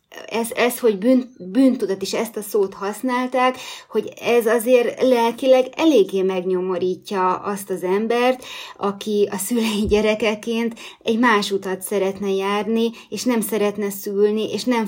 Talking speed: 125 wpm